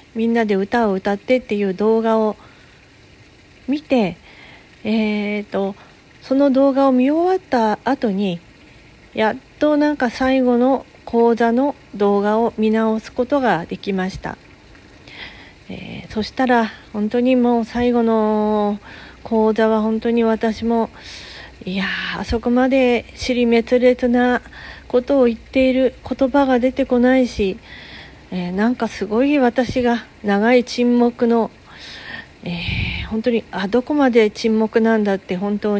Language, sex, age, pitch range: Japanese, female, 40-59, 200-250 Hz